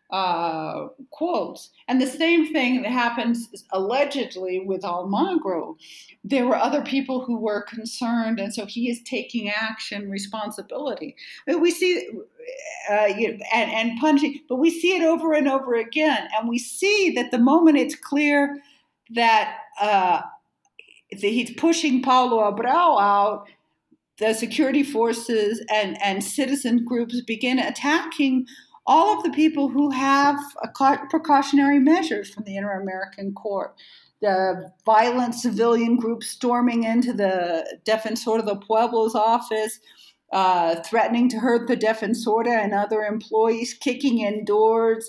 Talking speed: 135 wpm